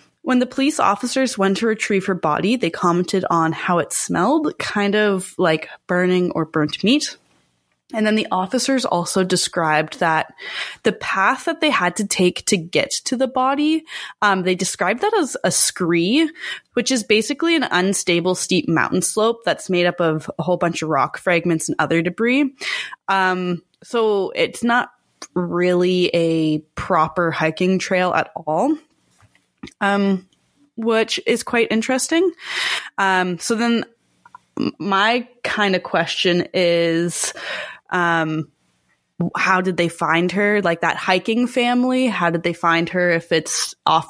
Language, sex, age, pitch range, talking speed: English, female, 20-39, 175-245 Hz, 150 wpm